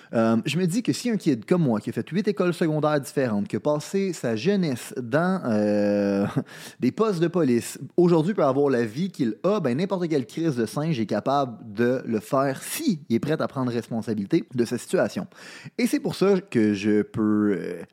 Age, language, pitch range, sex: 30-49, French, 115-180 Hz, male